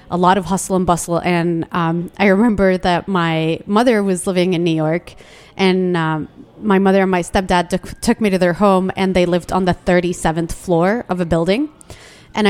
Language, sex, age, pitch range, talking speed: English, female, 30-49, 175-205 Hz, 195 wpm